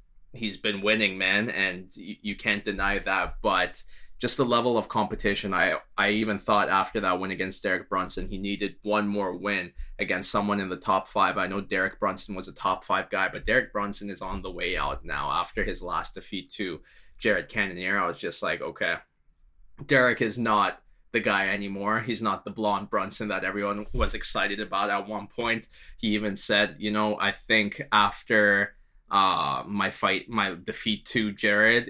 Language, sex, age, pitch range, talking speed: English, male, 20-39, 100-115 Hz, 190 wpm